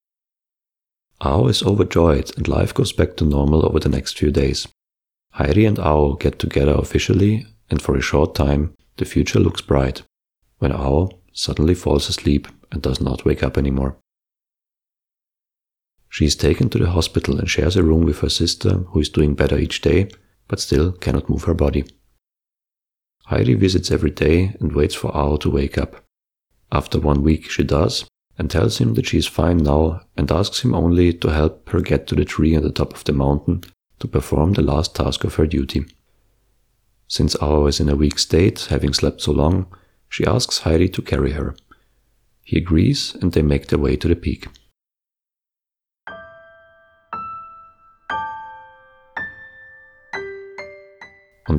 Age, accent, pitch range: 40-59, German, 75-100 Hz